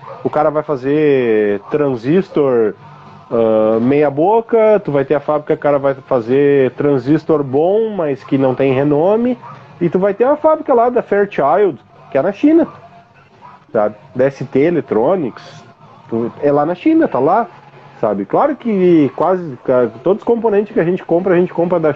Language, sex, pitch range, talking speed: Portuguese, male, 140-195 Hz, 170 wpm